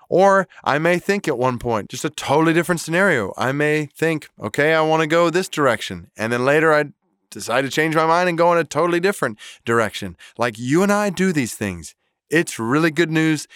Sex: male